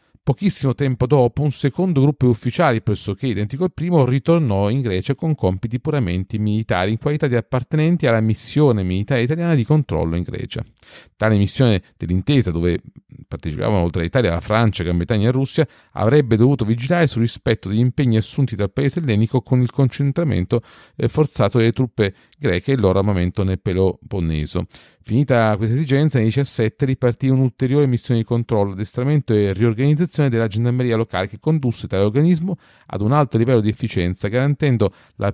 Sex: male